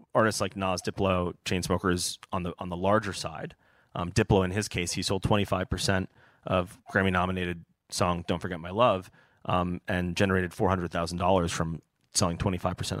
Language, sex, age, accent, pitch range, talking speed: English, male, 30-49, American, 90-105 Hz, 150 wpm